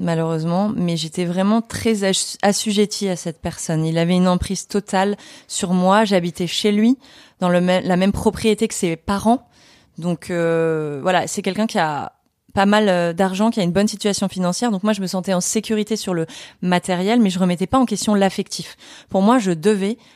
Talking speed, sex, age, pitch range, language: 195 wpm, female, 20-39, 175-210 Hz, French